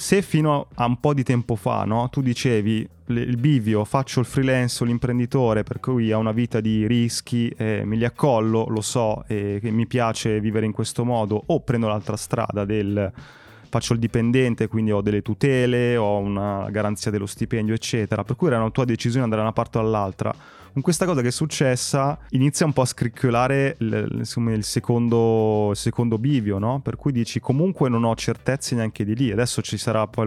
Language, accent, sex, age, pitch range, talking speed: Italian, native, male, 20-39, 110-130 Hz, 205 wpm